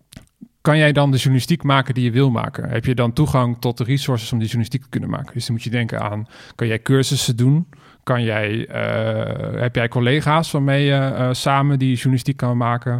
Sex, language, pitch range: male, Dutch, 120-135 Hz